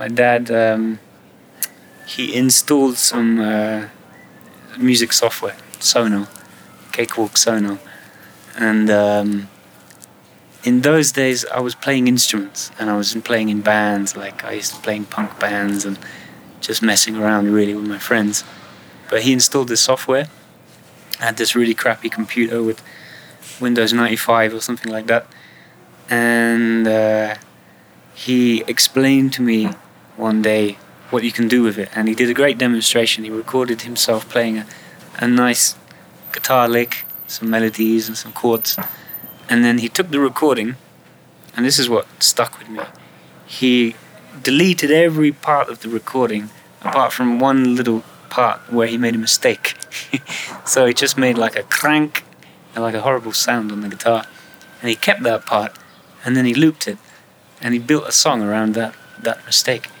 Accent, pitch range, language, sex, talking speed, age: British, 110-125 Hz, English, male, 160 wpm, 20-39